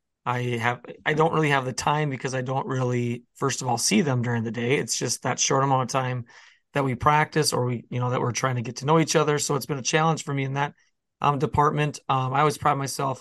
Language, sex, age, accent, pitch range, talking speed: English, male, 20-39, American, 130-150 Hz, 270 wpm